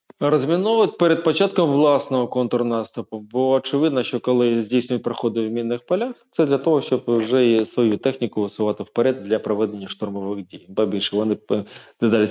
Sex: male